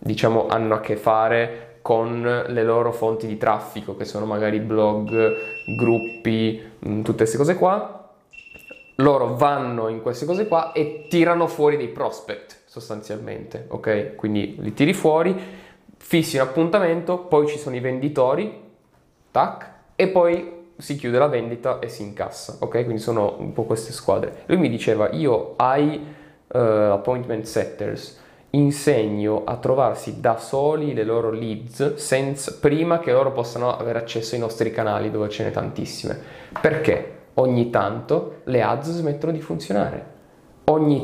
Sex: male